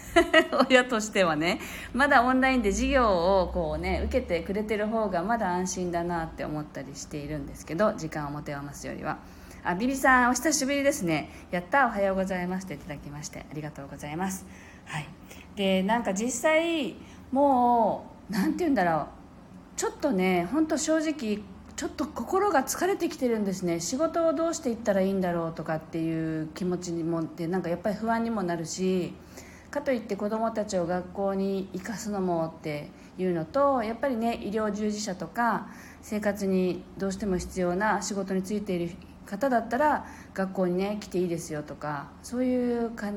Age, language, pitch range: 40-59, Japanese, 175-240 Hz